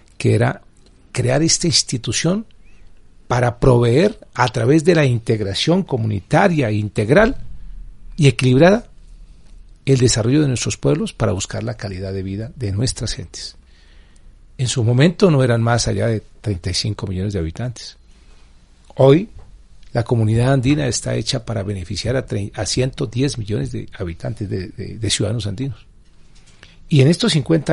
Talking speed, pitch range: 140 wpm, 100-130 Hz